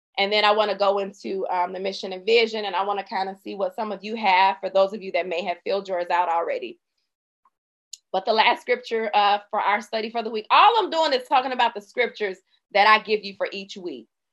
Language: English